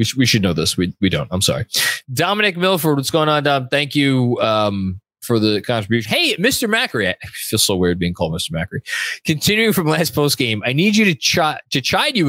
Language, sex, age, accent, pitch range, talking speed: English, male, 20-39, American, 105-155 Hz, 215 wpm